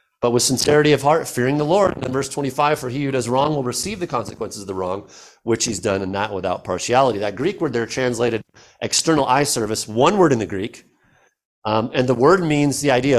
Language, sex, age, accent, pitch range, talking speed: English, male, 50-69, American, 110-145 Hz, 230 wpm